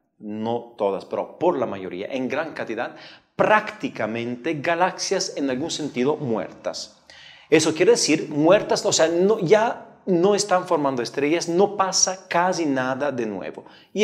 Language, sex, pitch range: Spanish, male, 125-185 Hz